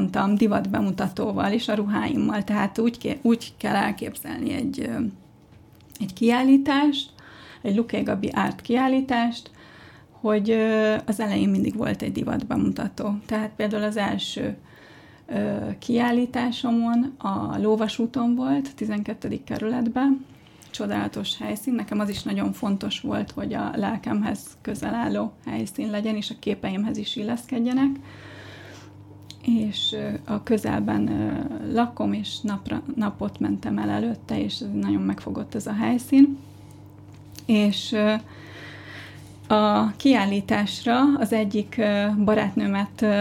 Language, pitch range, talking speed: Hungarian, 200-240 Hz, 115 wpm